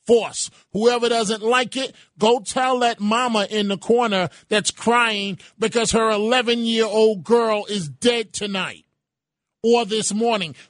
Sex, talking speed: male, 145 wpm